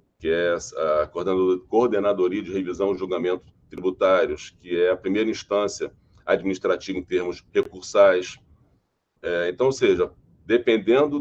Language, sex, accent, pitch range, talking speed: Portuguese, male, Brazilian, 95-135 Hz, 120 wpm